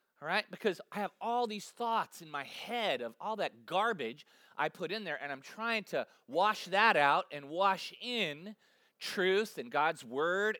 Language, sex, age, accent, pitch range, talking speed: English, male, 30-49, American, 165-225 Hz, 185 wpm